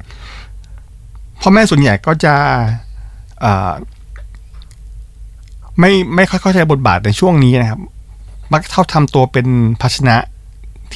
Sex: male